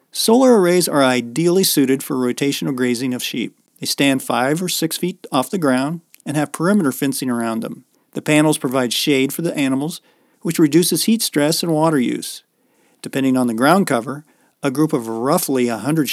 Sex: male